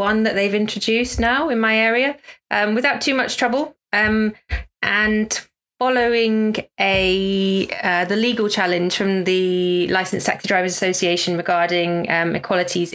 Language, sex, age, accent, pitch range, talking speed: English, female, 20-39, British, 175-210 Hz, 140 wpm